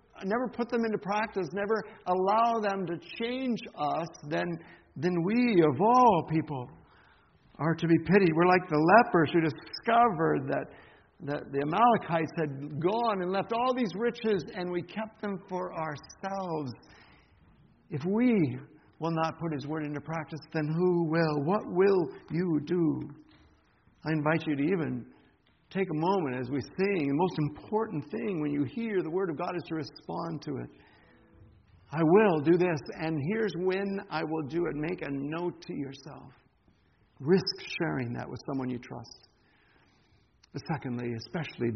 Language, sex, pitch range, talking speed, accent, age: English, male, 140-190 Hz, 160 wpm, American, 60-79